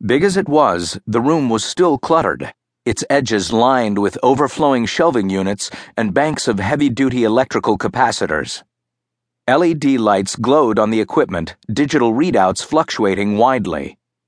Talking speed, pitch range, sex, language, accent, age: 135 wpm, 100-140 Hz, male, English, American, 50-69